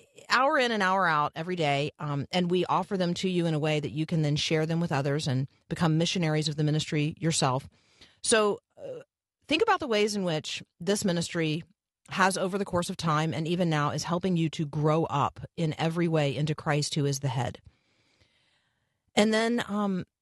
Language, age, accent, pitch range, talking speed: English, 40-59, American, 150-180 Hz, 205 wpm